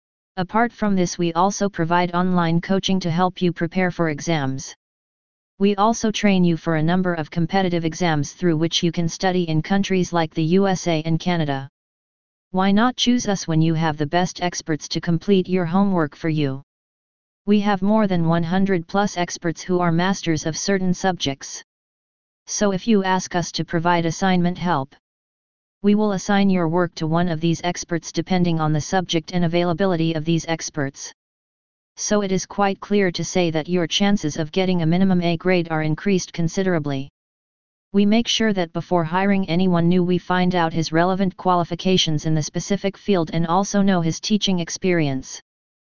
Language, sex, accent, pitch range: English, female, American, 165-190 Hz